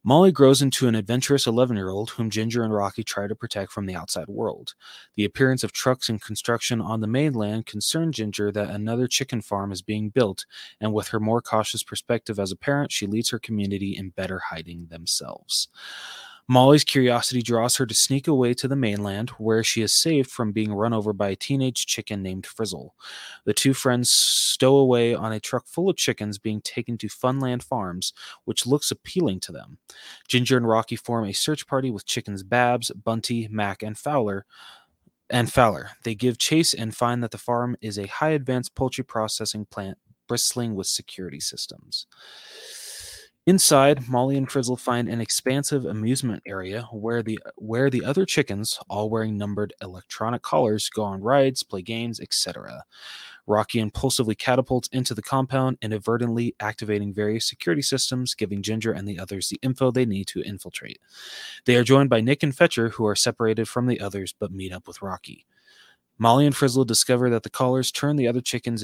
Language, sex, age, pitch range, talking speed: English, male, 20-39, 105-130 Hz, 185 wpm